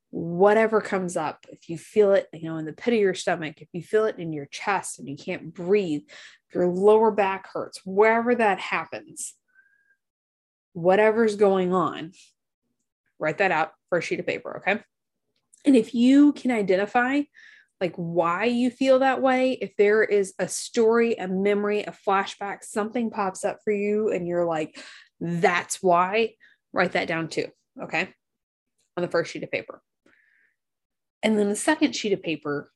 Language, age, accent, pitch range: English, 20-39, American, 175-220 Hz